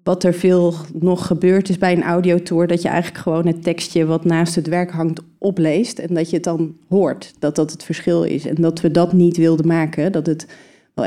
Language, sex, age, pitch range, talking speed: Dutch, female, 30-49, 160-175 Hz, 230 wpm